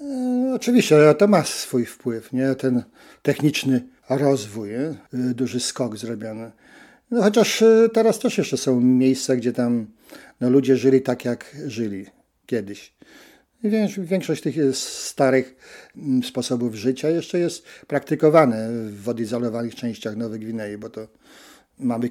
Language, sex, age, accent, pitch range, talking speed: Polish, male, 50-69, native, 120-150 Hz, 130 wpm